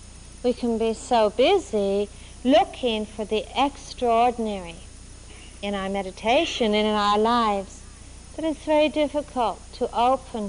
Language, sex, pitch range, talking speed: English, female, 195-250 Hz, 125 wpm